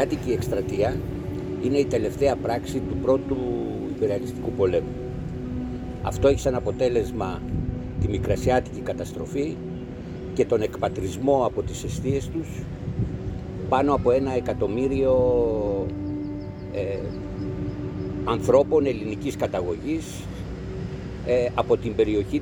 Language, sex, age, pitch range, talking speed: Greek, male, 60-79, 95-130 Hz, 100 wpm